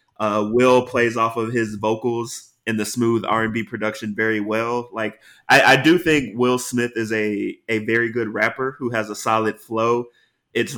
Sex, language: male, English